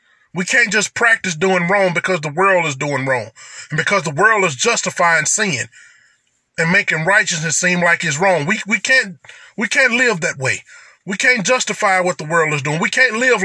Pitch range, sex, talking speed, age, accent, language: 180-245 Hz, male, 200 wpm, 20-39, American, English